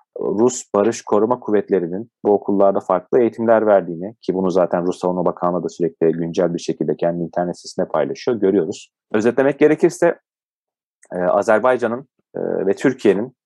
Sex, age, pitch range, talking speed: male, 30-49, 90-120 Hz, 135 wpm